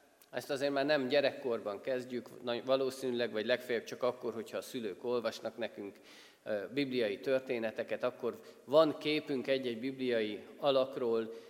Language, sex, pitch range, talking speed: Hungarian, male, 125-150 Hz, 125 wpm